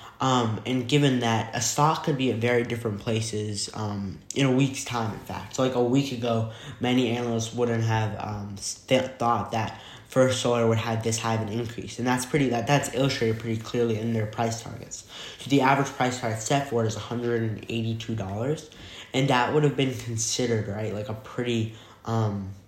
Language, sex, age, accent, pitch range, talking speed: English, male, 10-29, American, 110-120 Hz, 190 wpm